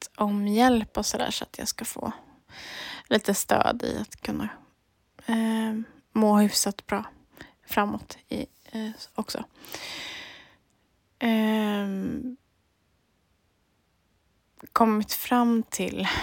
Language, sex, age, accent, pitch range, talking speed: Swedish, female, 20-39, native, 195-225 Hz, 95 wpm